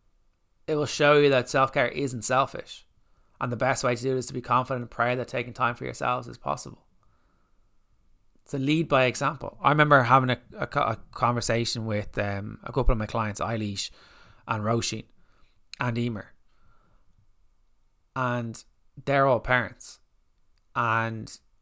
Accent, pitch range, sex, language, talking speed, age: Irish, 110-135 Hz, male, English, 160 wpm, 20-39